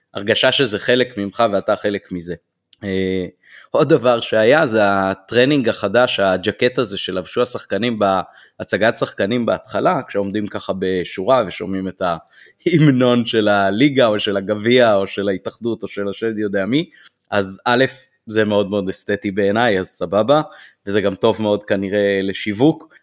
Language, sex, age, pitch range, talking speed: Hebrew, male, 30-49, 100-125 Hz, 145 wpm